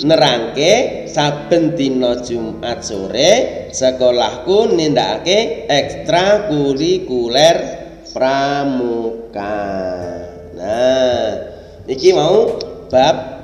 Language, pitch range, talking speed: Indonesian, 140-215 Hz, 60 wpm